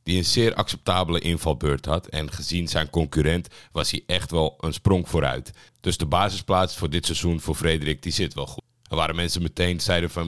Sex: male